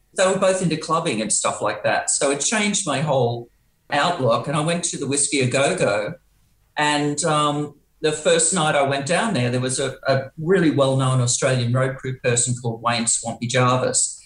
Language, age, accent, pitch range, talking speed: English, 50-69, Australian, 130-175 Hz, 195 wpm